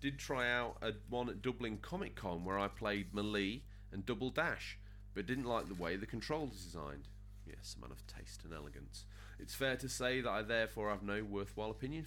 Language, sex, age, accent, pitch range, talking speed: English, male, 30-49, British, 95-110 Hz, 210 wpm